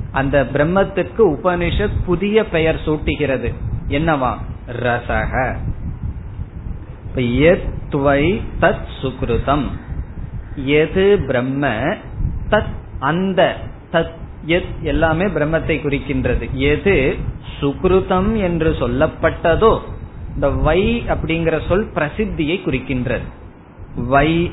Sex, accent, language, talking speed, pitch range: male, native, Tamil, 55 wpm, 120-160 Hz